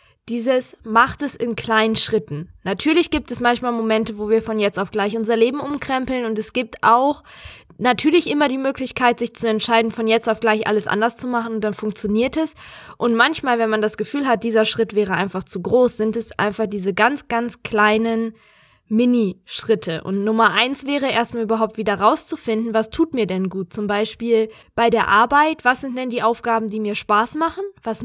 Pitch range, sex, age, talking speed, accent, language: 215-250 Hz, female, 20-39, 195 wpm, German, German